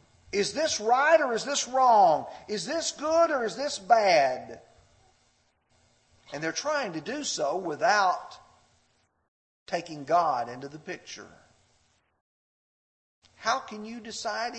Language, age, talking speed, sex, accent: English, 50-69, 125 wpm, male, American